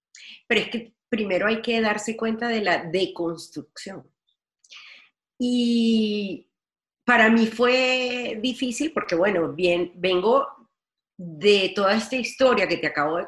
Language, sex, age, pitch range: Spanish, female, 40-59, 175-220 Hz